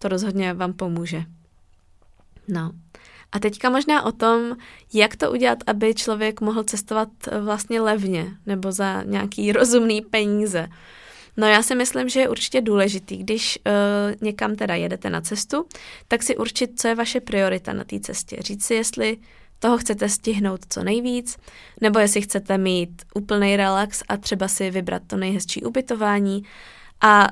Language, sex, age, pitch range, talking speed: Czech, female, 20-39, 195-225 Hz, 155 wpm